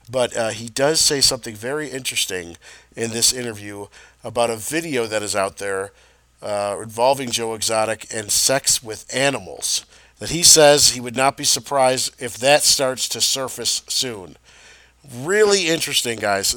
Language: English